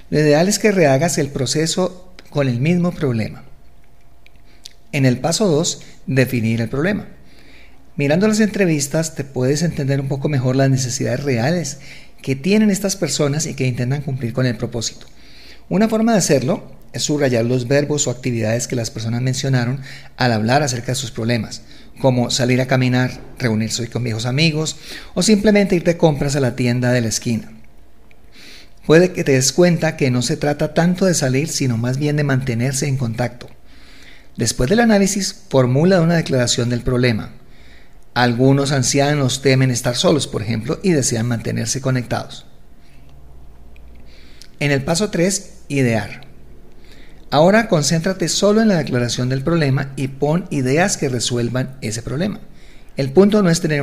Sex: male